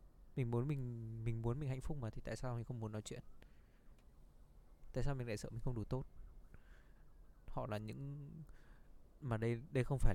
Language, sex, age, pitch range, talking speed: Vietnamese, male, 20-39, 100-125 Hz, 200 wpm